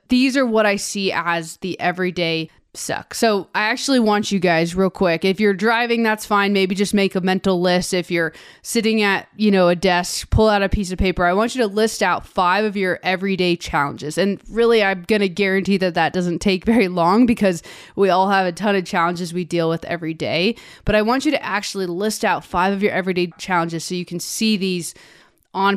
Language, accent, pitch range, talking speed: English, American, 180-220 Hz, 225 wpm